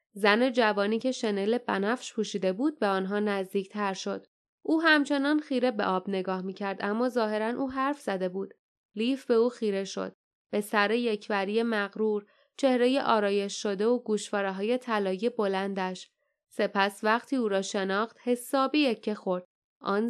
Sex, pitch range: female, 195-240 Hz